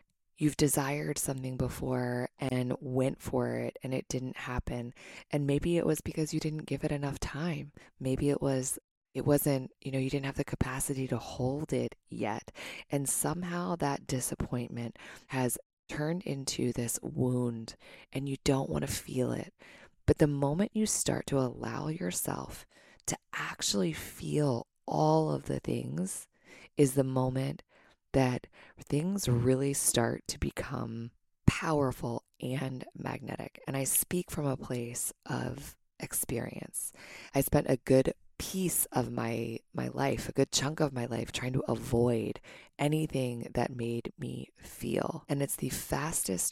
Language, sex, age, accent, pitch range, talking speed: English, female, 20-39, American, 125-145 Hz, 150 wpm